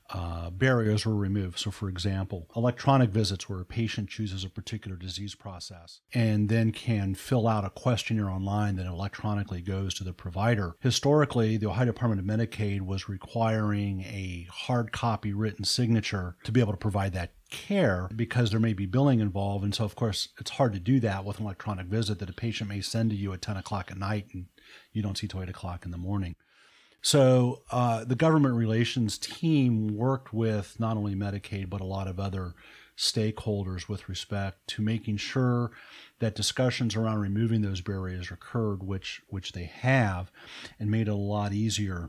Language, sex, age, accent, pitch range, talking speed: English, male, 40-59, American, 95-115 Hz, 185 wpm